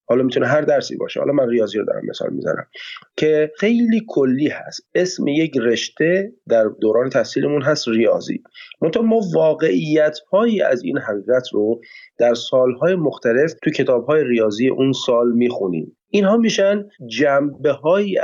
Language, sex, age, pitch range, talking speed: Persian, male, 30-49, 120-170 Hz, 145 wpm